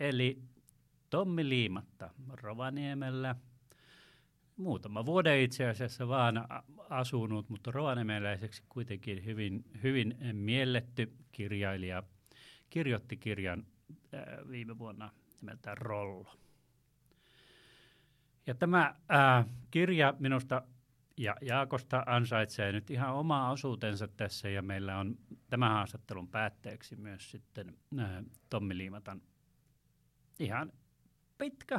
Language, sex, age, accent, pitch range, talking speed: Finnish, male, 30-49, native, 110-135 Hz, 90 wpm